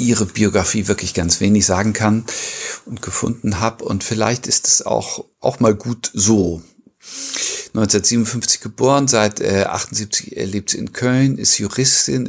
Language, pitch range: German, 95-115 Hz